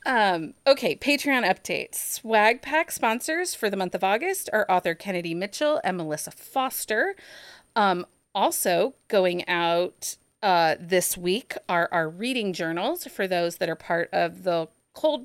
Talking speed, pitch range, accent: 150 wpm, 175-230 Hz, American